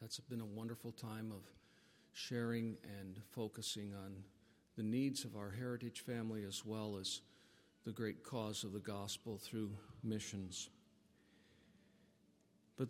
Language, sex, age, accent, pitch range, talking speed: English, male, 50-69, American, 110-135 Hz, 130 wpm